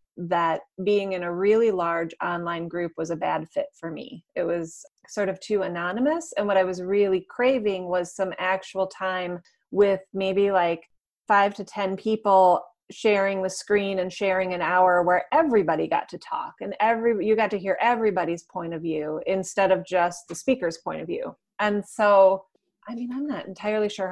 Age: 30-49